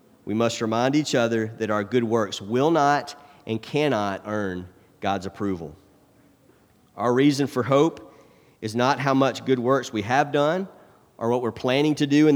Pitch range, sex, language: 105-130 Hz, male, English